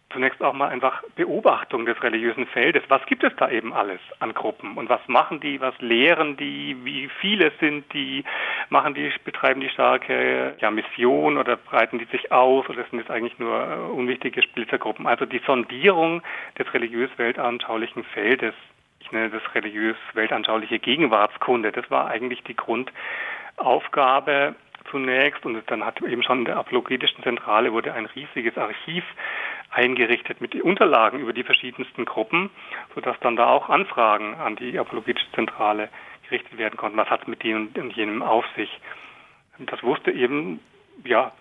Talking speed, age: 160 wpm, 40-59